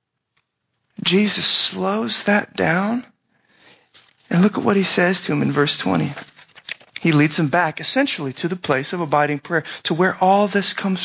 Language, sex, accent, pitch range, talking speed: English, male, American, 150-195 Hz, 170 wpm